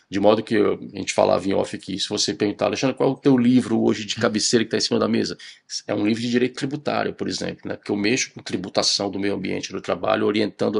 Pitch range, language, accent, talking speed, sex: 105-135 Hz, Portuguese, Brazilian, 260 wpm, male